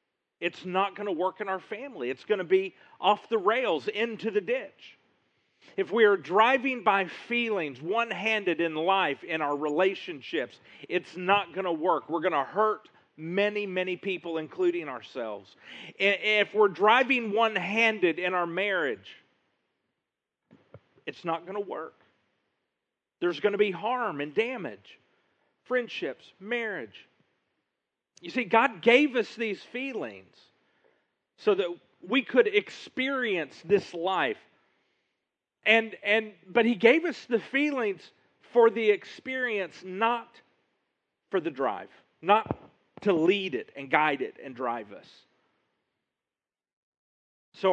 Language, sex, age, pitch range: English, male, 40-59, 175-230 Hz